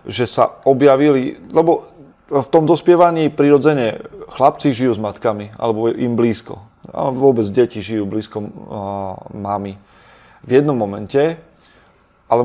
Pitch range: 110-130 Hz